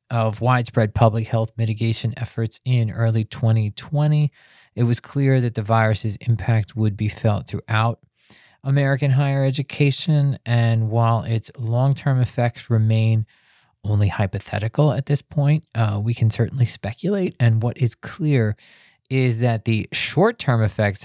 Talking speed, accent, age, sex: 135 wpm, American, 20-39, male